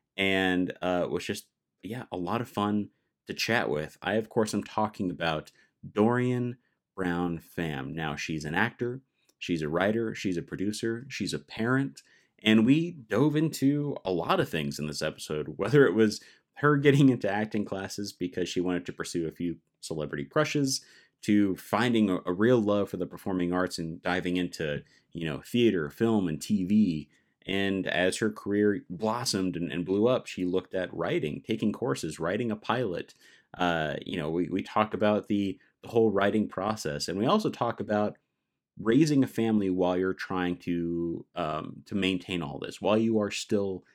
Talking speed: 180 wpm